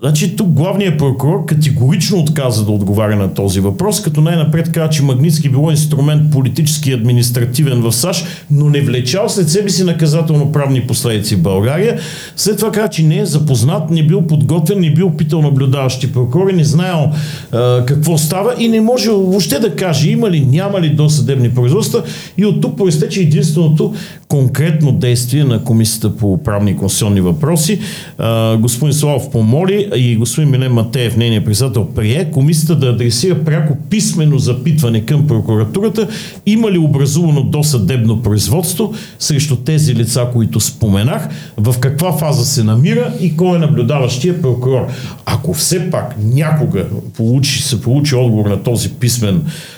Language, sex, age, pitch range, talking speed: Bulgarian, male, 50-69, 120-165 Hz, 155 wpm